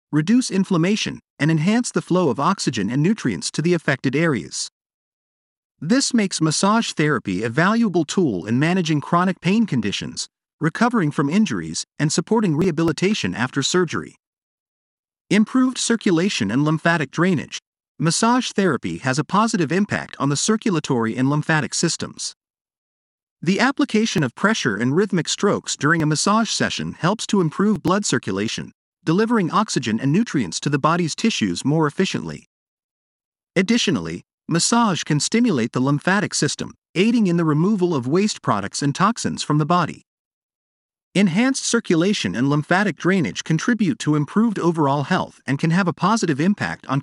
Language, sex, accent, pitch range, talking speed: English, male, American, 150-210 Hz, 145 wpm